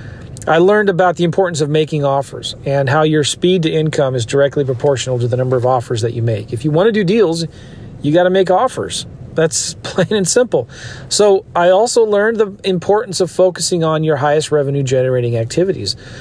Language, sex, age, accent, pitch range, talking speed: English, male, 40-59, American, 130-175 Hz, 200 wpm